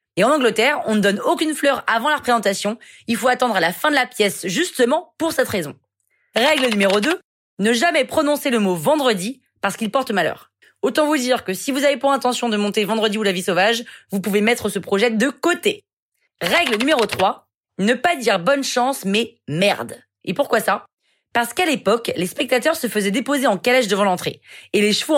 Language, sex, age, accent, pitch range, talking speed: French, female, 20-39, French, 210-275 Hz, 210 wpm